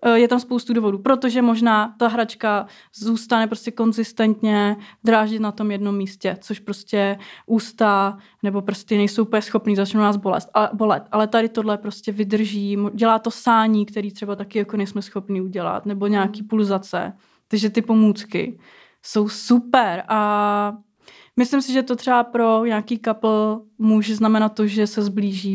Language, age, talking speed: Czech, 20-39, 150 wpm